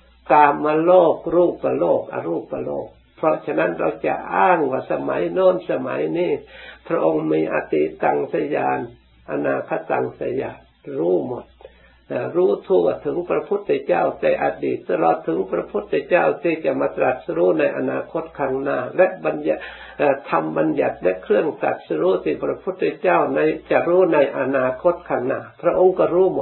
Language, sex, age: Thai, male, 60-79